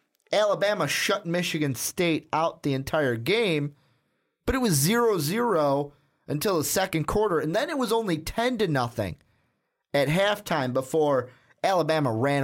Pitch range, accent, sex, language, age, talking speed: 130-175 Hz, American, male, English, 30-49, 140 wpm